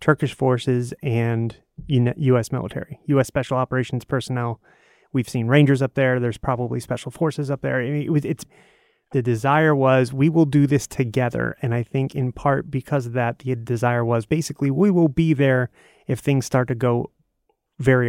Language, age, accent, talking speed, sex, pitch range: English, 30-49, American, 180 wpm, male, 120-140 Hz